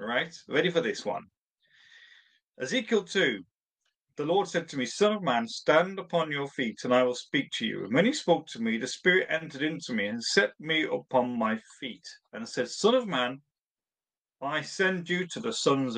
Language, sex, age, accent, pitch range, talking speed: English, male, 40-59, British, 130-210 Hz, 200 wpm